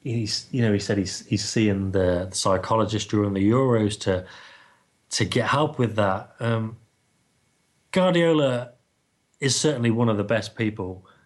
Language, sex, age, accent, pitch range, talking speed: English, male, 30-49, British, 95-120 Hz, 150 wpm